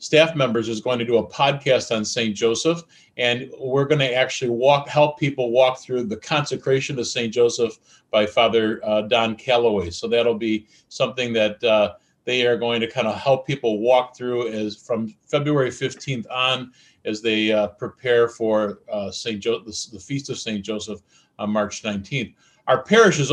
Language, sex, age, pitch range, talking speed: English, male, 40-59, 115-145 Hz, 185 wpm